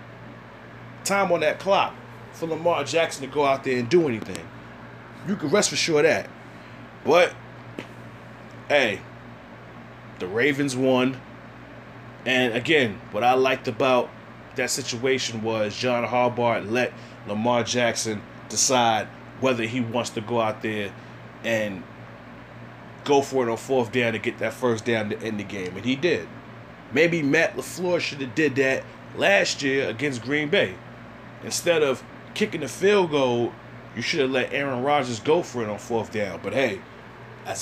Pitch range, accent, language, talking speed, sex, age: 115-135 Hz, American, English, 160 wpm, male, 20-39